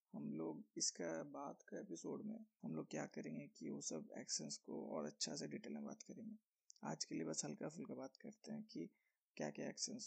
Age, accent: 20-39, native